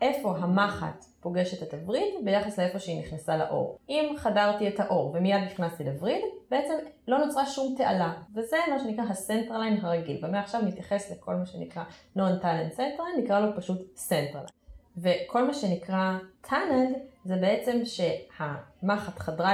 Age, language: 20-39, Hebrew